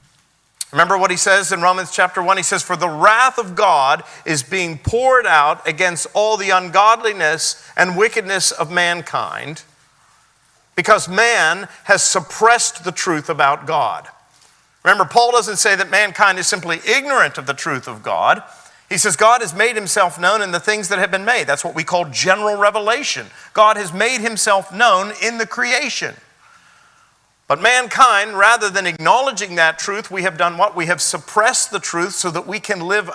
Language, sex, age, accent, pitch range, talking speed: English, male, 40-59, American, 160-210 Hz, 175 wpm